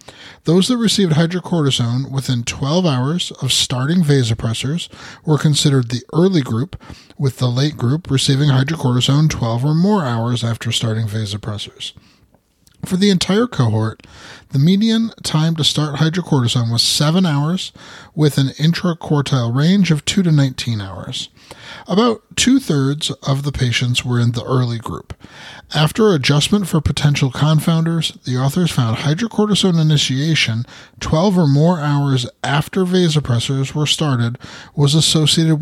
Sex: male